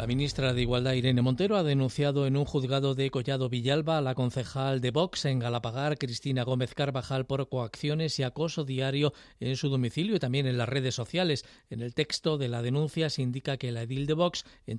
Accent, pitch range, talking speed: Spanish, 125-145 Hz, 210 wpm